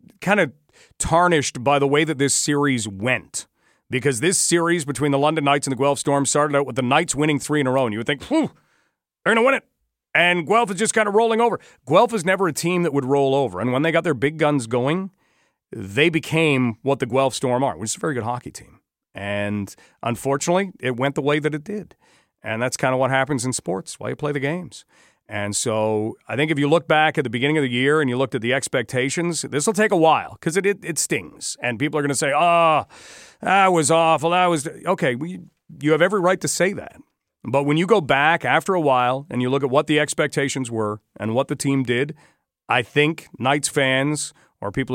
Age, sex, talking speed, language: 40-59, male, 240 wpm, English